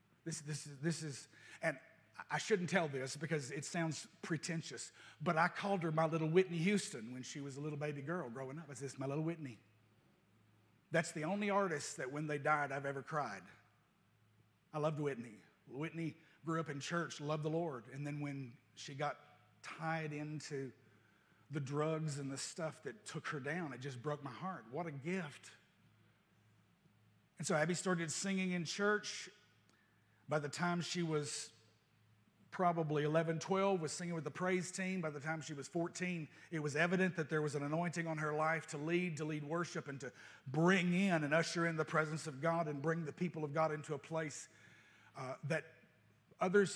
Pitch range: 140-175 Hz